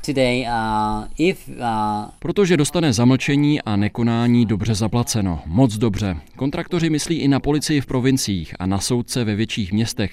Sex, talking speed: male, 130 wpm